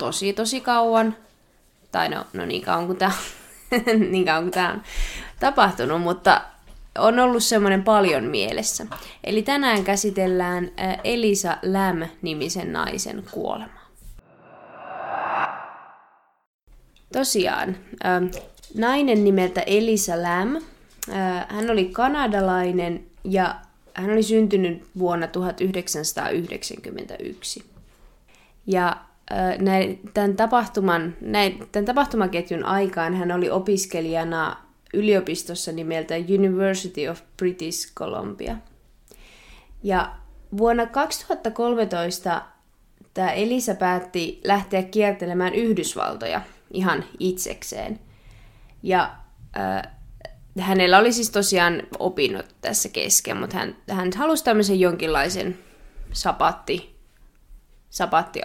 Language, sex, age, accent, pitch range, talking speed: Finnish, female, 20-39, native, 175-215 Hz, 85 wpm